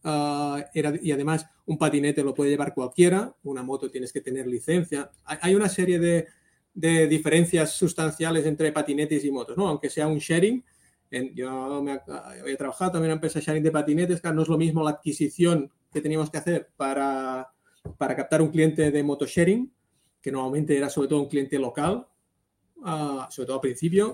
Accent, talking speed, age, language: Spanish, 190 wpm, 30-49, Spanish